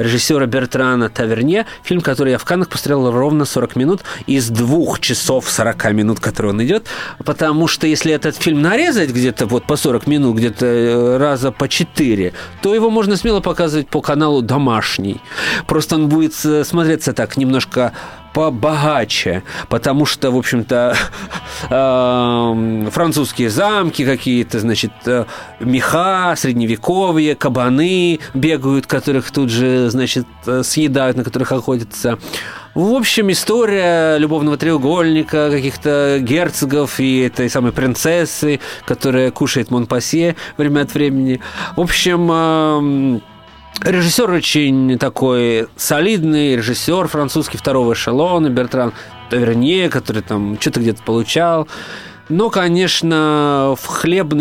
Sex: male